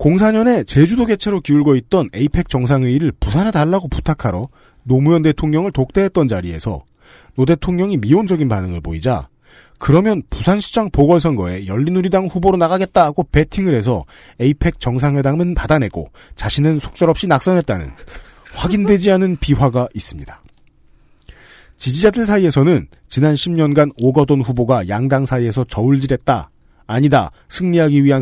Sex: male